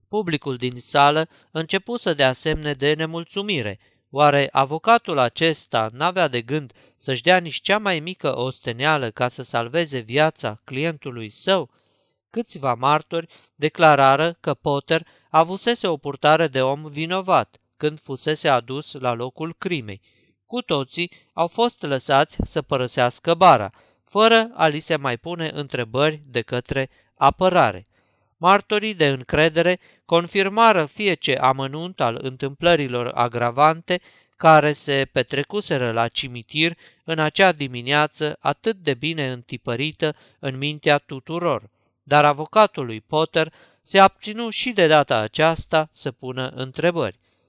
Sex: male